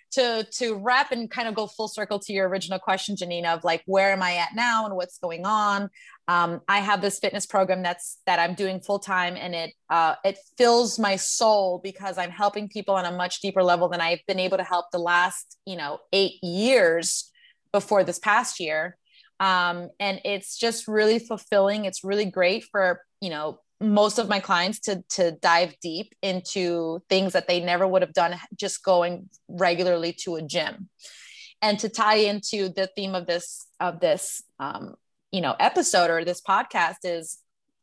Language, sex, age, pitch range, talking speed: English, female, 30-49, 180-210 Hz, 190 wpm